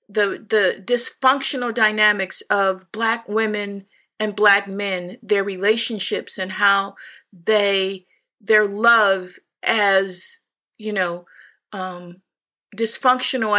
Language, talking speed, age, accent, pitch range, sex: English, 95 wpm, 50-69, American, 210-275 Hz, female